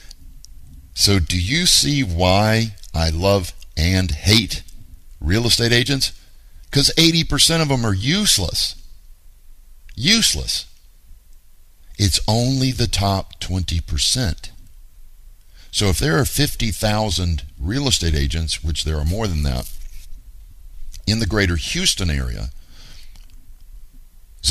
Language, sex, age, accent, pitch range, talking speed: English, male, 50-69, American, 75-100 Hz, 110 wpm